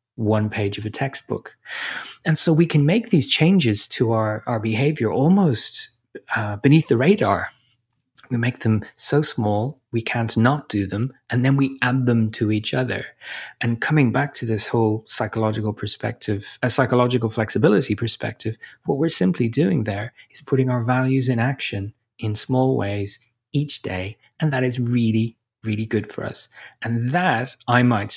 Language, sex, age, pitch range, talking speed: English, male, 30-49, 110-130 Hz, 170 wpm